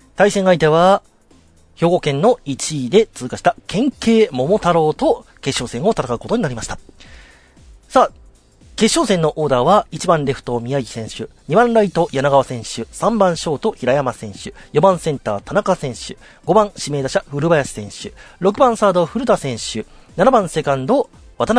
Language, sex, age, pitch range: Japanese, male, 40-59, 135-220 Hz